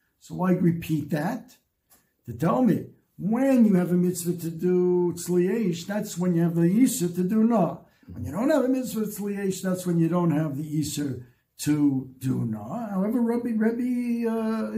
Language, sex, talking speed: English, male, 185 wpm